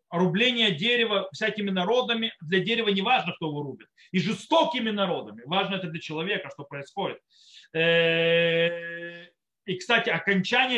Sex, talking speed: male, 130 wpm